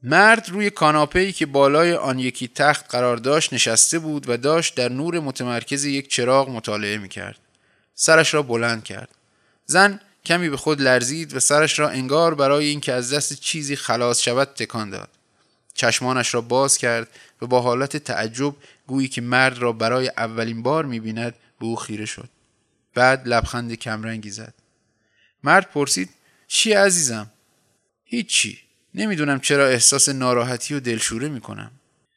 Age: 20-39